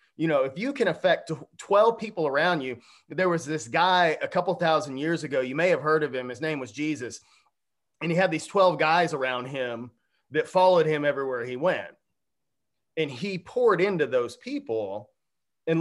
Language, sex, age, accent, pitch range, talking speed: English, male, 30-49, American, 140-180 Hz, 190 wpm